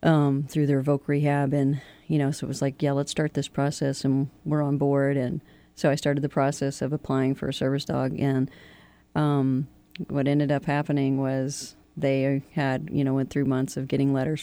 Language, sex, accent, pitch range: English, female, American, 140-160 Hz